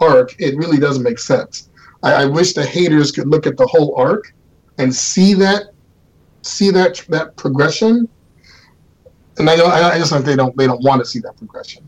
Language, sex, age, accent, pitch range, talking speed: English, male, 40-59, American, 135-190 Hz, 195 wpm